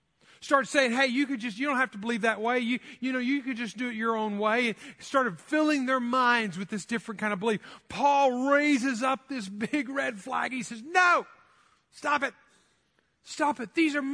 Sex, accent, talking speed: male, American, 215 wpm